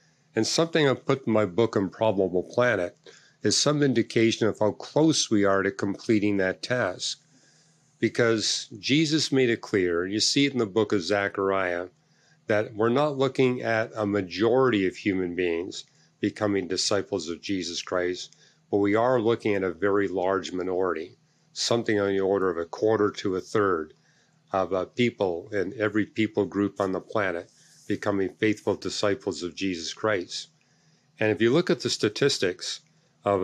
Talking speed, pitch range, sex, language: 165 wpm, 95-115 Hz, male, English